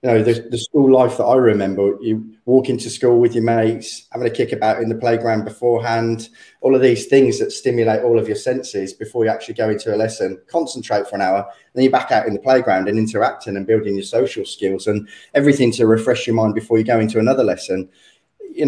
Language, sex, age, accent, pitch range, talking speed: English, male, 20-39, British, 105-125 Hz, 235 wpm